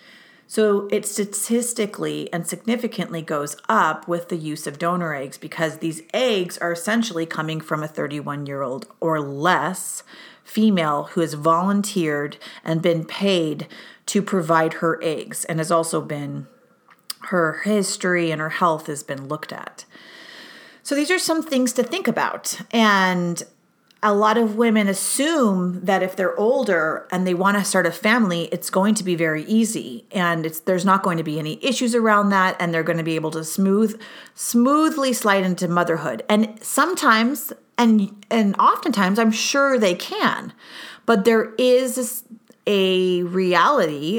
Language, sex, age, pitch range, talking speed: English, female, 40-59, 165-220 Hz, 160 wpm